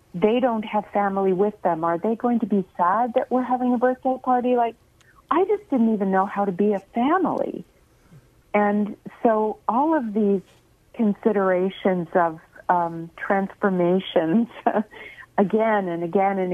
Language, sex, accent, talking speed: English, female, American, 150 wpm